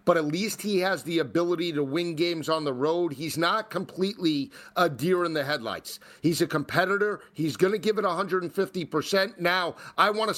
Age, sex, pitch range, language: 40-59, male, 175-225 Hz, English